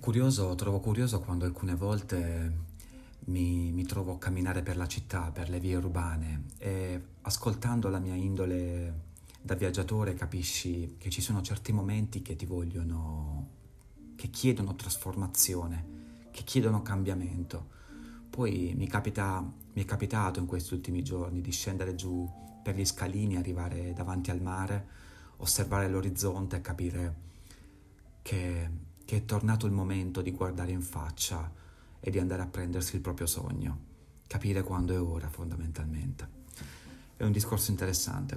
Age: 30-49